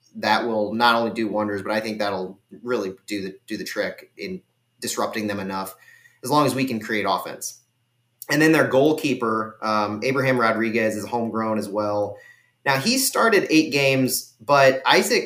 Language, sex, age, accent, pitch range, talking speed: English, male, 30-49, American, 110-135 Hz, 175 wpm